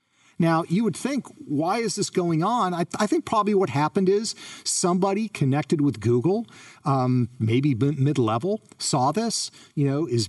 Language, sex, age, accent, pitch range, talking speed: English, male, 50-69, American, 135-195 Hz, 175 wpm